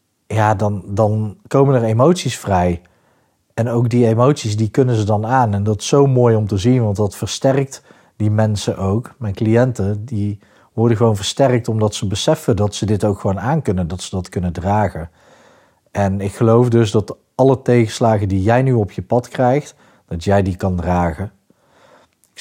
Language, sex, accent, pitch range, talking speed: Dutch, male, Dutch, 100-120 Hz, 190 wpm